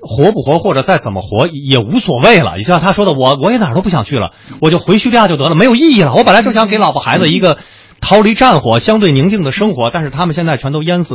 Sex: male